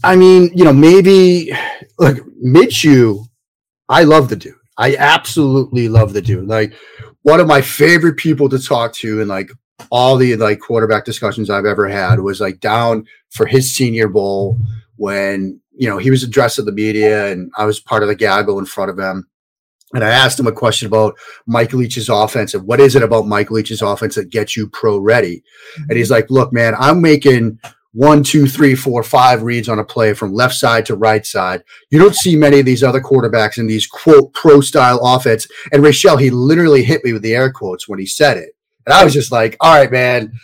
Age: 30-49